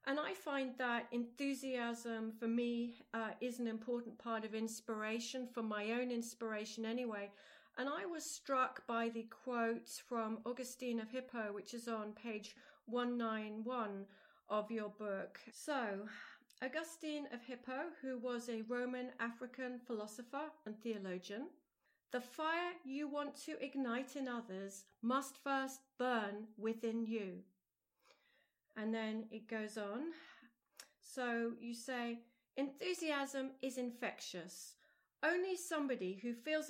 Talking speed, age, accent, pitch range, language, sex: 130 wpm, 40-59, British, 220-270 Hz, English, female